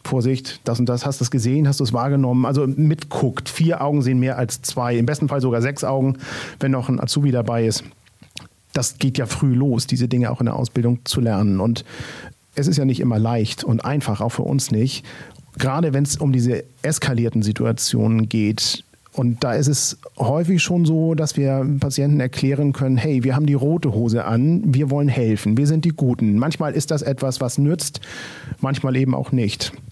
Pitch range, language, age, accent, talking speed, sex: 120-140 Hz, German, 40-59, German, 205 wpm, male